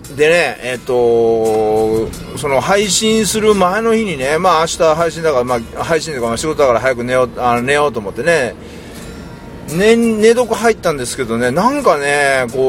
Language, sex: Japanese, male